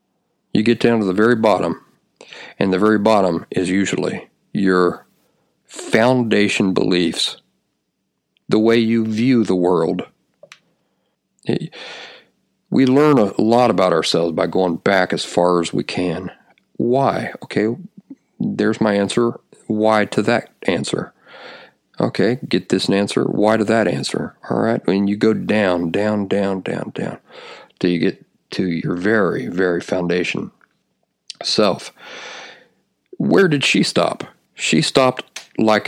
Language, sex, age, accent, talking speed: English, male, 50-69, American, 130 wpm